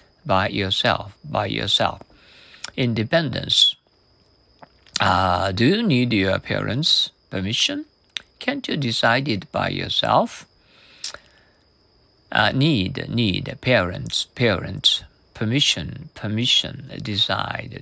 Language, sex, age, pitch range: Japanese, male, 50-69, 100-140 Hz